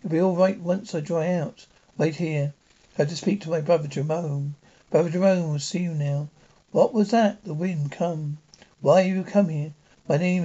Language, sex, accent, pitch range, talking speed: English, male, British, 155-190 Hz, 220 wpm